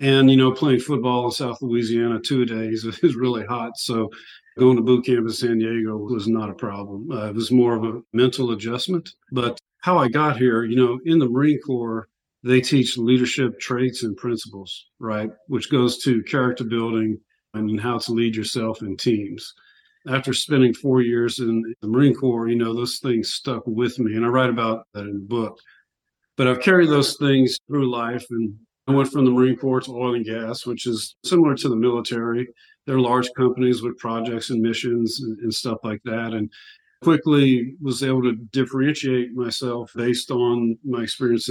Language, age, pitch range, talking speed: English, 40-59, 115-130 Hz, 195 wpm